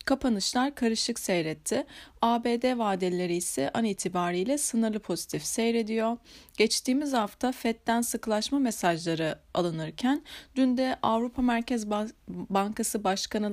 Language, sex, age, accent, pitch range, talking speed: Turkish, female, 30-49, native, 190-245 Hz, 100 wpm